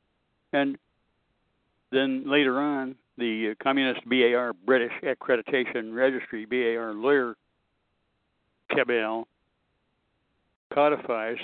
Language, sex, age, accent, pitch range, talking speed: English, male, 60-79, American, 110-130 Hz, 75 wpm